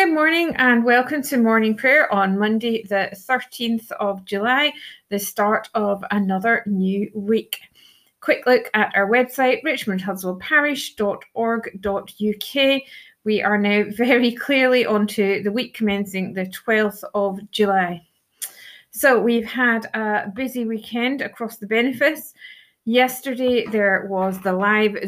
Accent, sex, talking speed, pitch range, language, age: British, female, 125 wpm, 210-255 Hz, English, 30-49